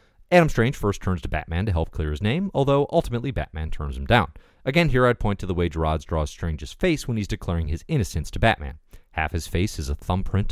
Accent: American